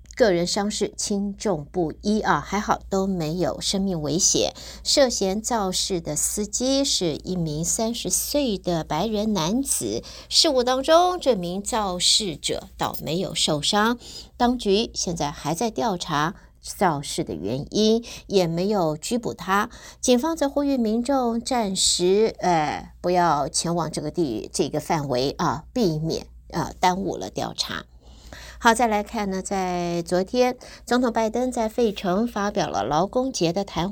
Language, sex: Chinese, female